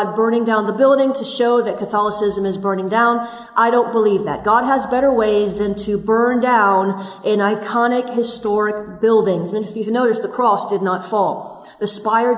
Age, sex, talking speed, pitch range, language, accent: 40-59, female, 190 wpm, 210-250 Hz, English, American